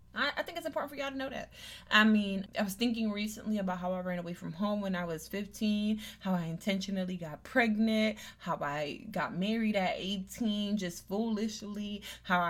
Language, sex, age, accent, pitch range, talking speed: English, female, 20-39, American, 170-200 Hz, 190 wpm